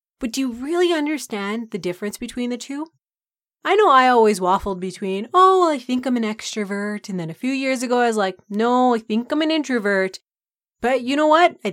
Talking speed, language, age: 220 wpm, English, 30-49